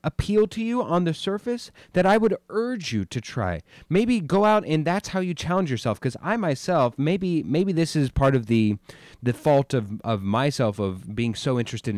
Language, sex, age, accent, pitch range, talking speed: English, male, 30-49, American, 115-160 Hz, 205 wpm